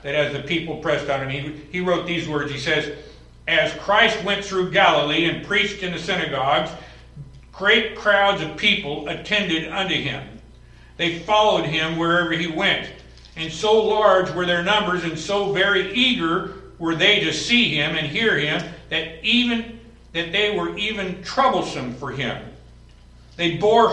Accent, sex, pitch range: American, male, 145-205 Hz